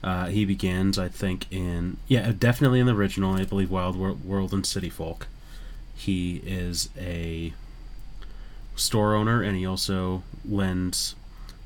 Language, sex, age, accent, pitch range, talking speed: English, male, 30-49, American, 95-110 Hz, 145 wpm